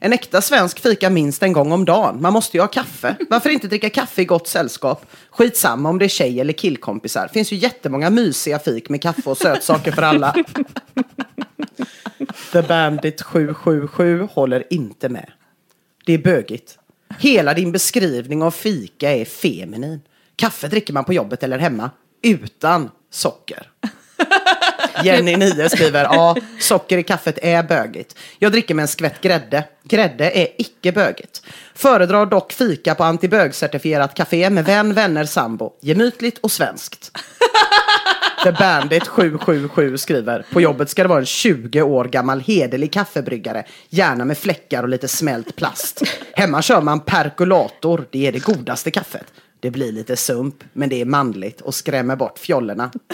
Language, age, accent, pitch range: English, 40-59, Swedish, 145-215 Hz